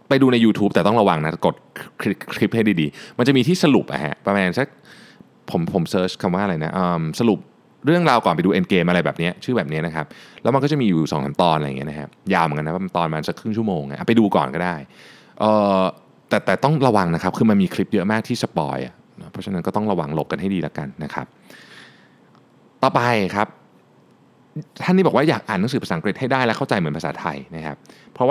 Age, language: 20-39, Thai